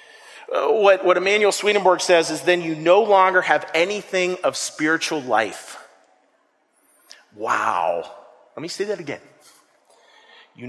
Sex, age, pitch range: male, 40-59, 140-170 Hz